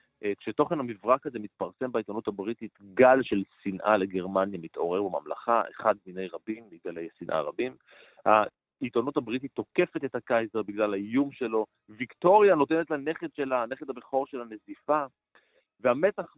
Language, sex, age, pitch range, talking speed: Hebrew, male, 30-49, 105-140 Hz, 130 wpm